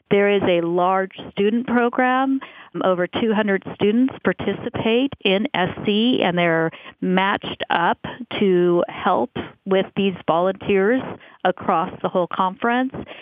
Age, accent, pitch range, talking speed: 40-59, American, 170-205 Hz, 115 wpm